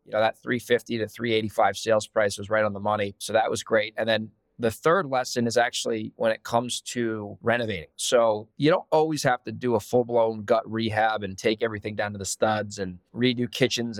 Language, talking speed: English, 215 wpm